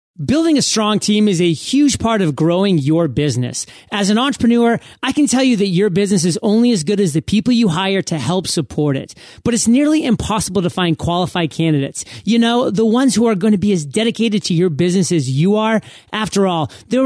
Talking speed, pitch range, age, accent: 220 wpm, 170-225 Hz, 30-49, American